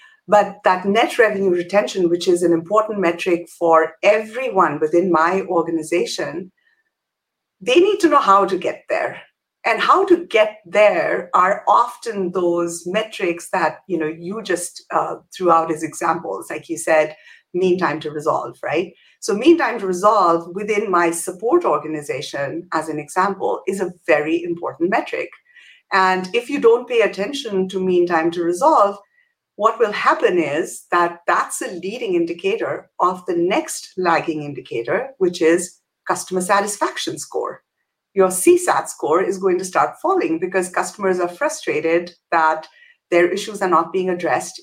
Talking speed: 155 wpm